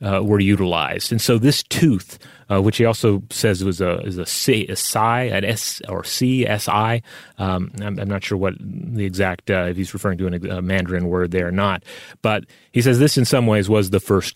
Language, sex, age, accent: English, male, 30-49, American